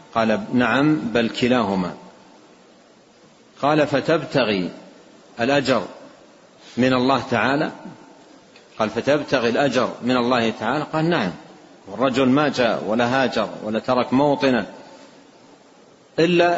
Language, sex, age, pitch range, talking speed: Arabic, male, 50-69, 115-145 Hz, 100 wpm